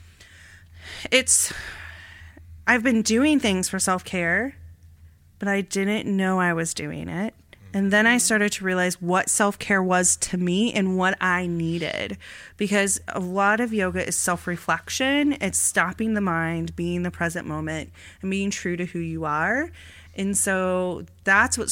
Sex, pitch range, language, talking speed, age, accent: female, 160-215 Hz, English, 155 wpm, 30-49, American